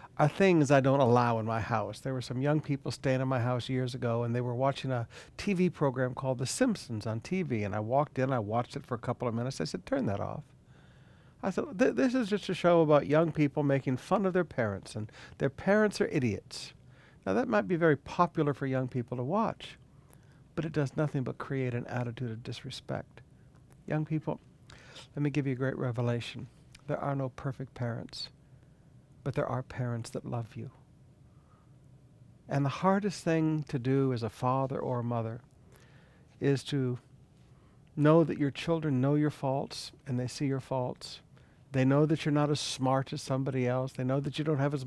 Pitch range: 125-150 Hz